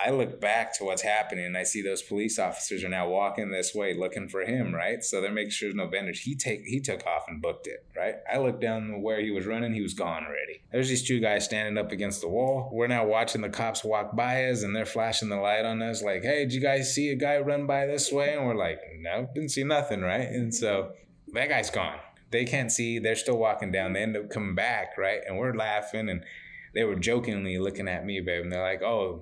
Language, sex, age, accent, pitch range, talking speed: English, male, 20-39, American, 105-135 Hz, 260 wpm